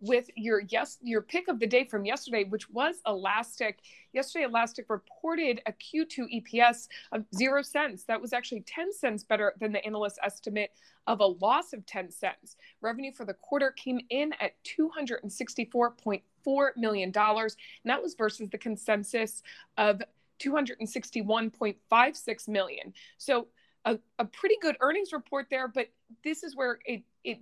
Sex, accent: female, American